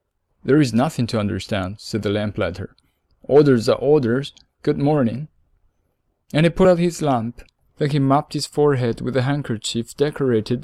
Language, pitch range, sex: Chinese, 115-140 Hz, male